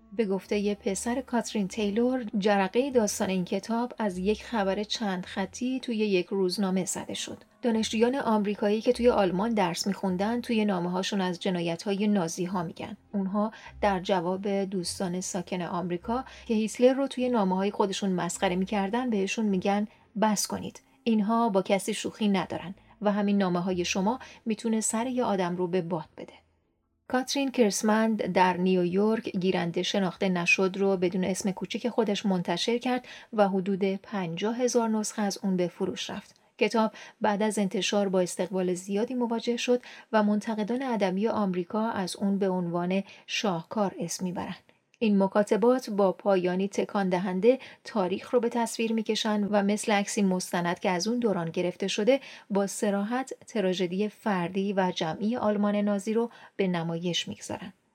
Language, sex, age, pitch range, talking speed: Persian, female, 30-49, 190-225 Hz, 150 wpm